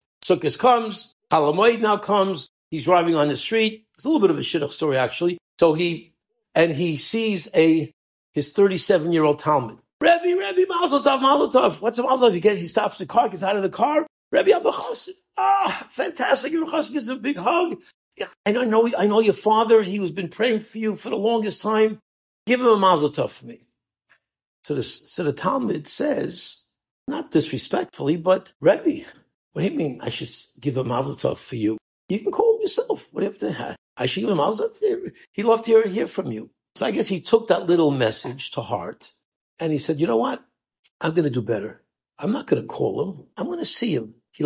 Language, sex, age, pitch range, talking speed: English, male, 60-79, 165-250 Hz, 215 wpm